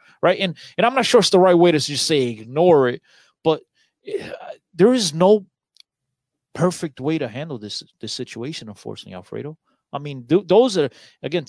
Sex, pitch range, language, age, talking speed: male, 140-185 Hz, English, 30-49, 195 wpm